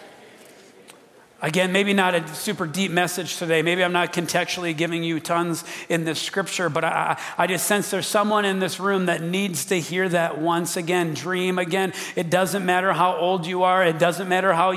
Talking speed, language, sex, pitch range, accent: 195 wpm, English, male, 160-185 Hz, American